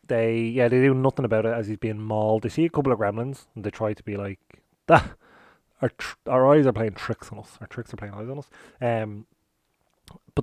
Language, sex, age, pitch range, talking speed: English, male, 30-49, 110-150 Hz, 235 wpm